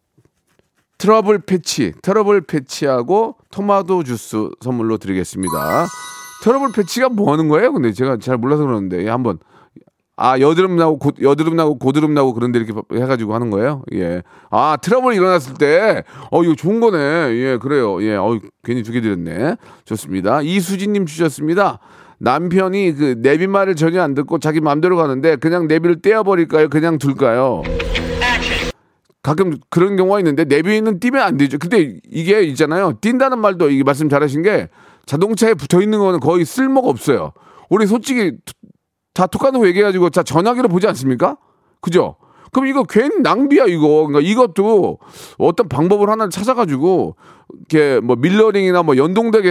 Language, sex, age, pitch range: Korean, male, 40-59, 145-205 Hz